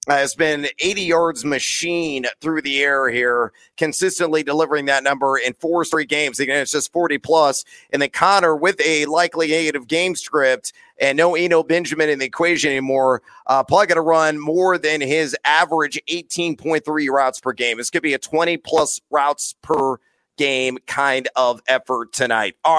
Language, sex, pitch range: English, male, 140-170 Hz